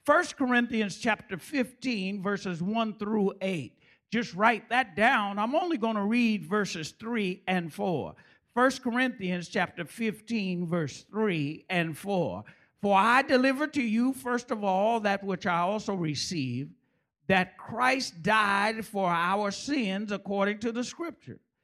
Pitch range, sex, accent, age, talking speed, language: 210-320 Hz, male, American, 50-69, 145 wpm, English